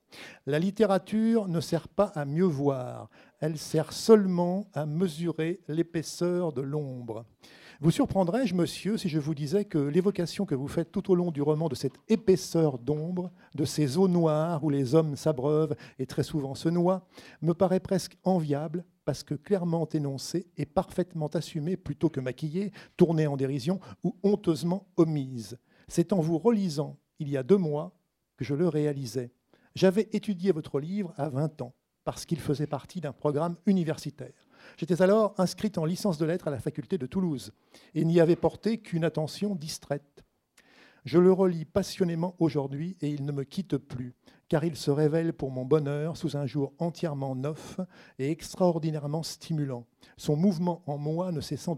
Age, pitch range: 50-69, 145-180 Hz